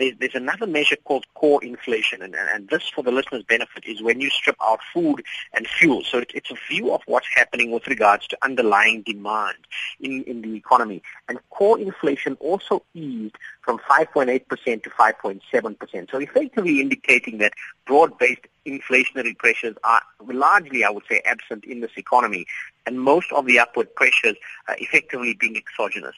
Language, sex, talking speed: English, male, 160 wpm